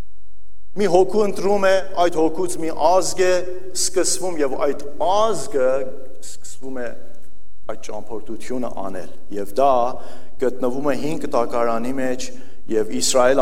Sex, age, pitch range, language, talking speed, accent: male, 50-69, 135-190 Hz, English, 120 wpm, Turkish